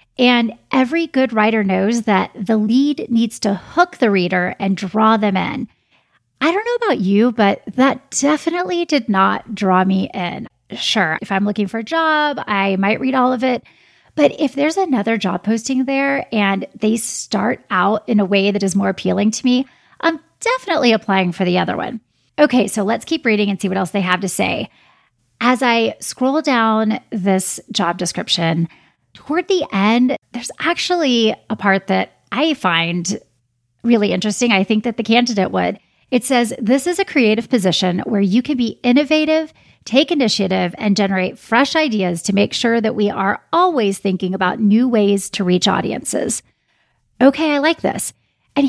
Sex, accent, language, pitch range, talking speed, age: female, American, English, 195-270 Hz, 180 wpm, 30-49